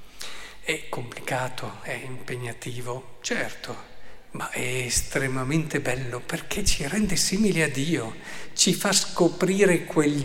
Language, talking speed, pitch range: Italian, 110 wpm, 140-185 Hz